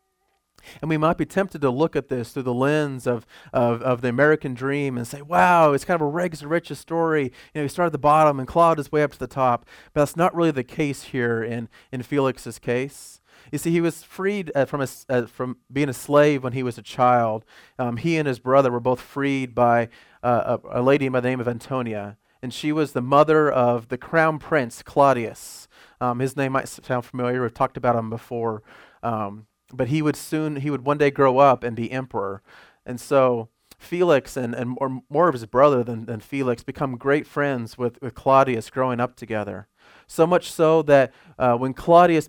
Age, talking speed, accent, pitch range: 30-49, 220 wpm, American, 120-150 Hz